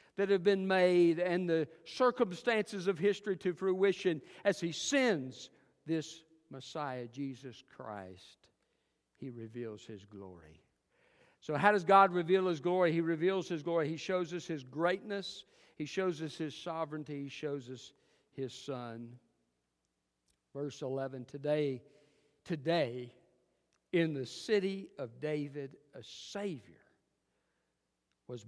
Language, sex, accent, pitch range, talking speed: English, male, American, 115-170 Hz, 125 wpm